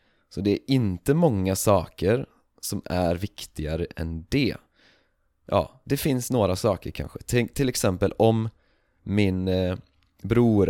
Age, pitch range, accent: 30-49, 85-105 Hz, native